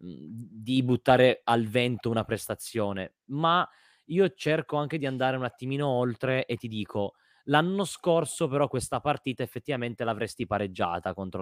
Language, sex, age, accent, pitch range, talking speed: Italian, male, 20-39, native, 110-150 Hz, 140 wpm